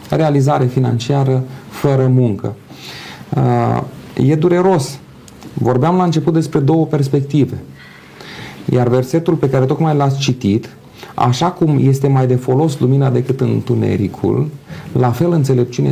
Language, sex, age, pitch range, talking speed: Romanian, male, 30-49, 125-150 Hz, 120 wpm